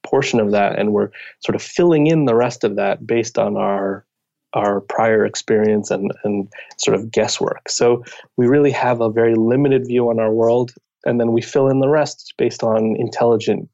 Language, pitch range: English, 105-130 Hz